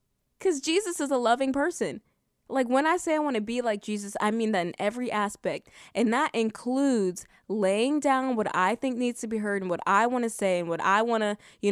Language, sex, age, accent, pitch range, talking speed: English, female, 20-39, American, 200-270 Hz, 235 wpm